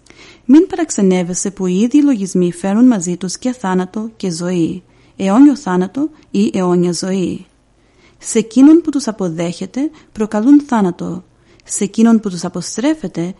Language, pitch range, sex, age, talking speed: Greek, 185-230 Hz, female, 30-49, 135 wpm